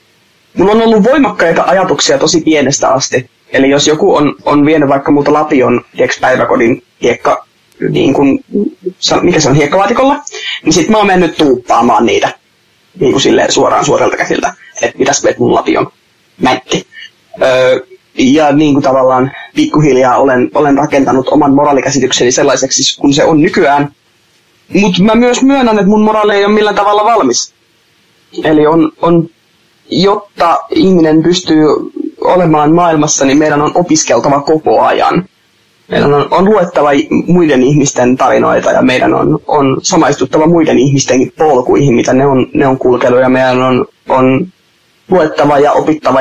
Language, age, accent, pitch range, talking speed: Finnish, 20-39, native, 135-190 Hz, 145 wpm